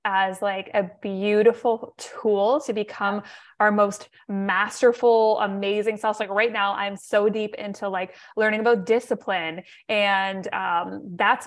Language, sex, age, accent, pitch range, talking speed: English, female, 20-39, American, 195-240 Hz, 135 wpm